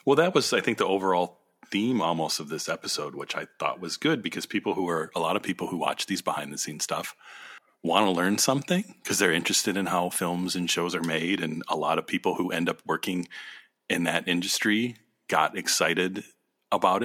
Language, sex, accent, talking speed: English, male, American, 215 wpm